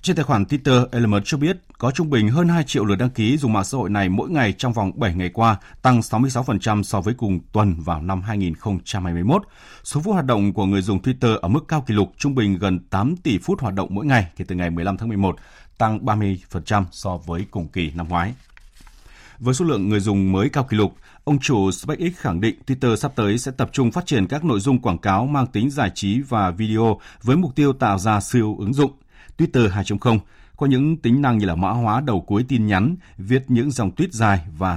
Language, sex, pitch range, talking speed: Vietnamese, male, 95-130 Hz, 235 wpm